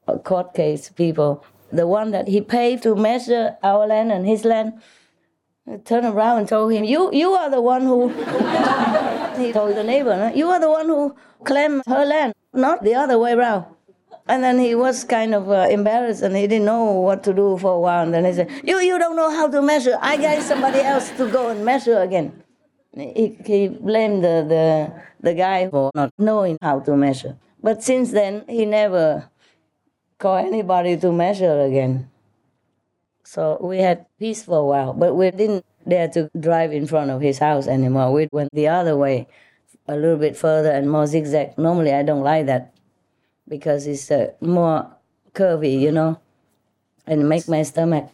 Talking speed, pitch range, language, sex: 190 wpm, 150-225 Hz, English, female